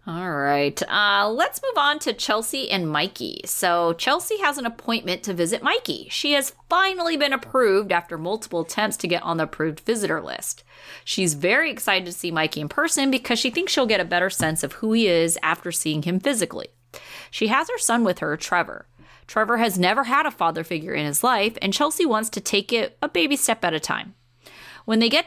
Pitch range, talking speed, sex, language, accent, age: 170-275 Hz, 210 wpm, female, English, American, 30-49